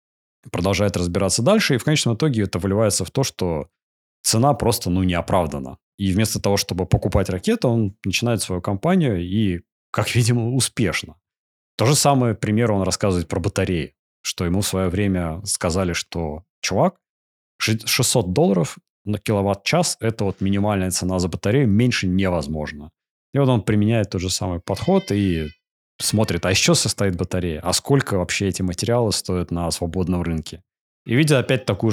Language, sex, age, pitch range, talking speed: Russian, male, 30-49, 90-115 Hz, 165 wpm